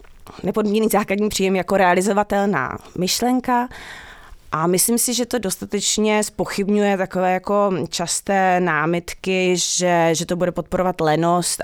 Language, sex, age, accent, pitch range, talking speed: English, female, 20-39, Czech, 170-200 Hz, 120 wpm